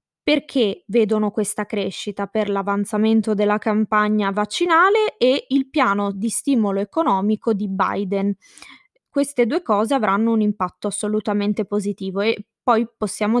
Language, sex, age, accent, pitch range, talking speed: Italian, female, 20-39, native, 205-250 Hz, 125 wpm